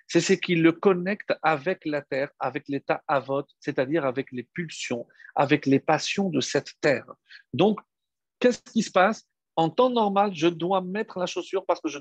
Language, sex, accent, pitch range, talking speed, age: French, male, French, 145-200 Hz, 185 wpm, 50-69